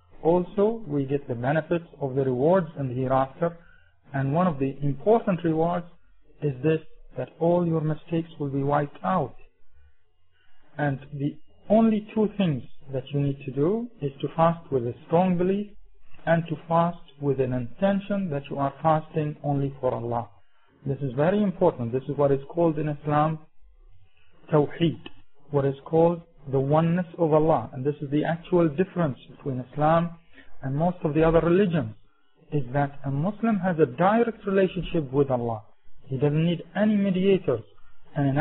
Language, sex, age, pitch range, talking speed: English, male, 50-69, 135-170 Hz, 165 wpm